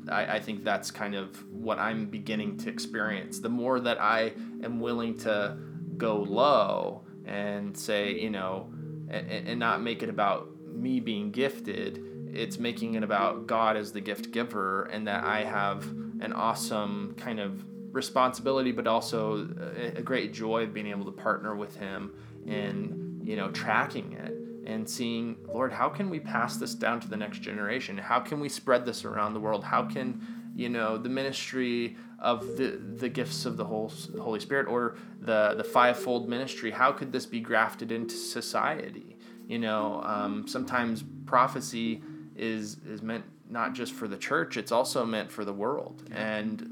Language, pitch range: English, 105-155 Hz